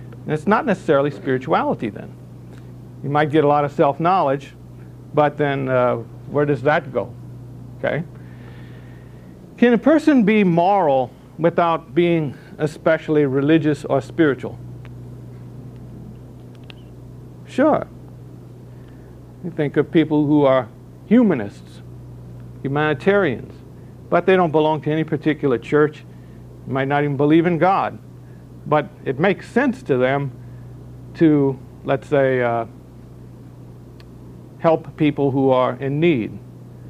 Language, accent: English, American